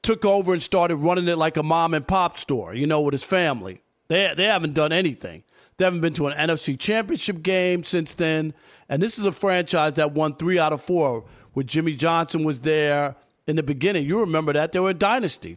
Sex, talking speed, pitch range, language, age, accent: male, 215 wpm, 150-185 Hz, English, 40-59, American